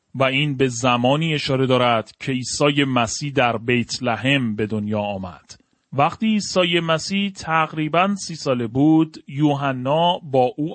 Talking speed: 140 wpm